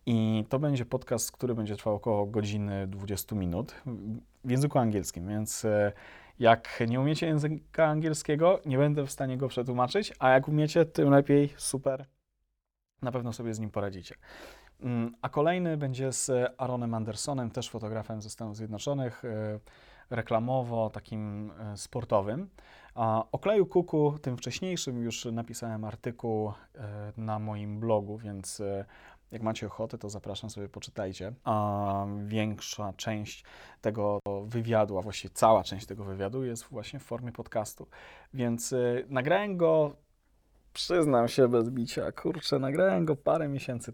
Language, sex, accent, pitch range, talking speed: Polish, male, native, 105-135 Hz, 135 wpm